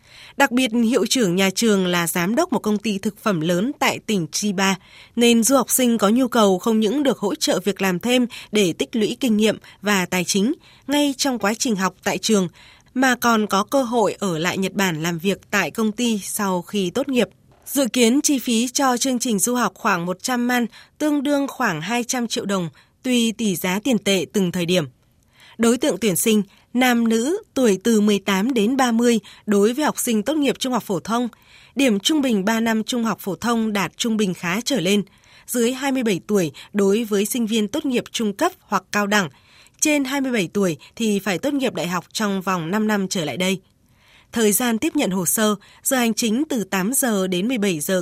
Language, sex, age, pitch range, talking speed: Vietnamese, female, 20-39, 190-245 Hz, 215 wpm